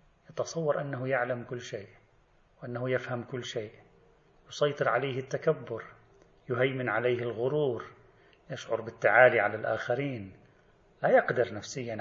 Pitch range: 115-155 Hz